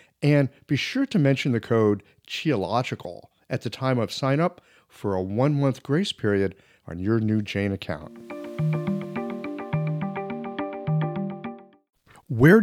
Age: 50-69